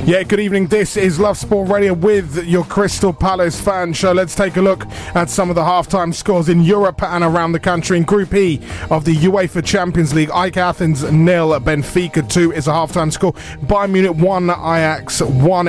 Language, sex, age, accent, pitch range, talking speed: English, male, 20-39, British, 155-185 Hz, 200 wpm